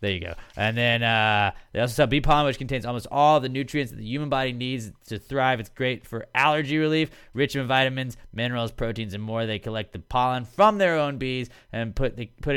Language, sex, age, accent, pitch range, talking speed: English, male, 20-39, American, 105-130 Hz, 230 wpm